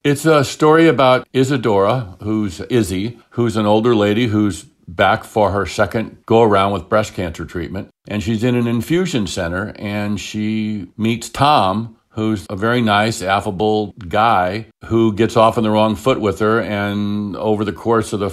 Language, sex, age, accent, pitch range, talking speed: English, male, 60-79, American, 95-115 Hz, 170 wpm